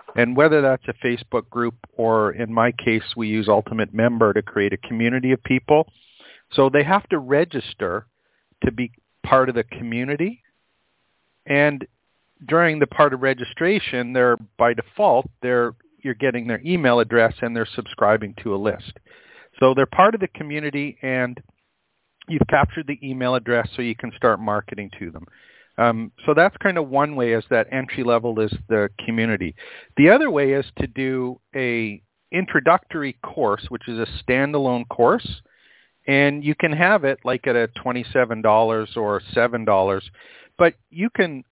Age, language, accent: 50-69, English, American